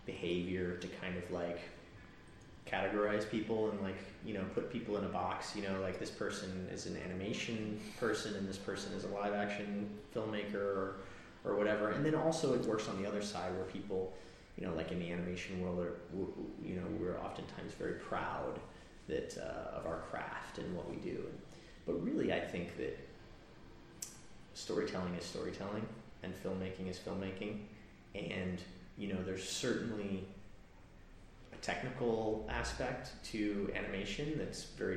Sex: male